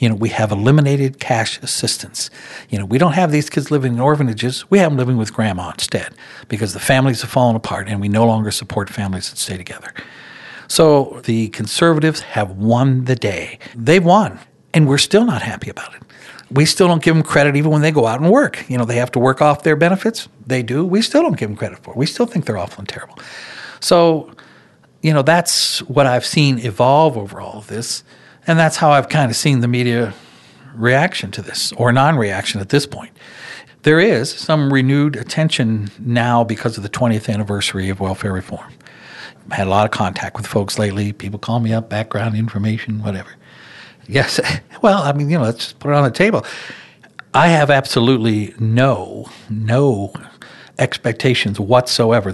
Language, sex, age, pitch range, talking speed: English, male, 60-79, 105-145 Hz, 200 wpm